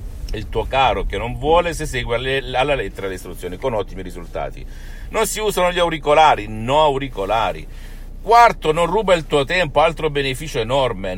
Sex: male